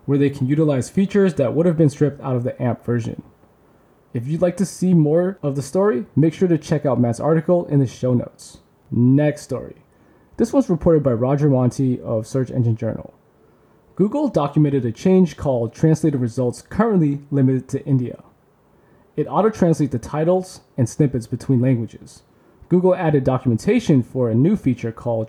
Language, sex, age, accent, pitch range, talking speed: English, male, 20-39, American, 125-165 Hz, 180 wpm